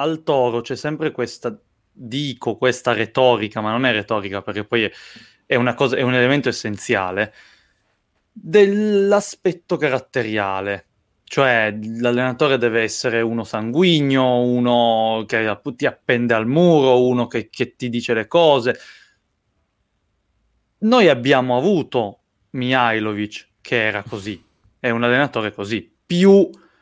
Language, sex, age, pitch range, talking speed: Italian, male, 20-39, 110-135 Hz, 120 wpm